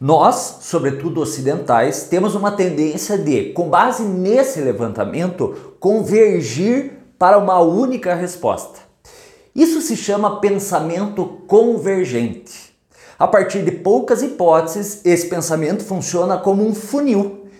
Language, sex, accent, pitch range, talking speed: English, male, Brazilian, 160-230 Hz, 110 wpm